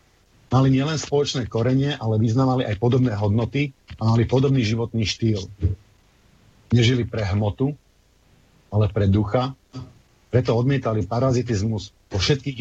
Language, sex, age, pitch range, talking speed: Slovak, male, 50-69, 100-125 Hz, 120 wpm